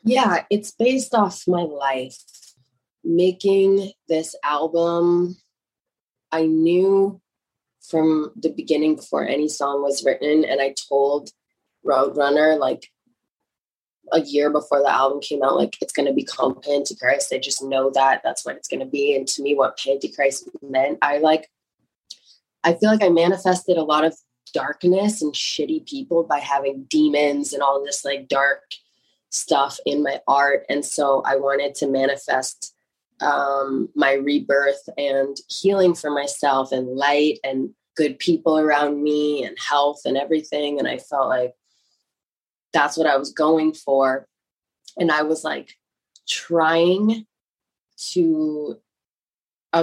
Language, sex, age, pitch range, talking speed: English, female, 20-39, 140-165 Hz, 145 wpm